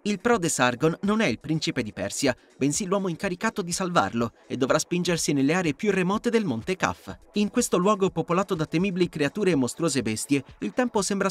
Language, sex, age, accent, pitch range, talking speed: Italian, male, 30-49, native, 150-210 Hz, 195 wpm